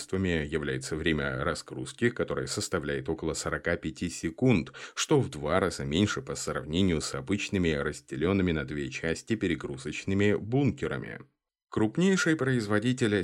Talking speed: 115 wpm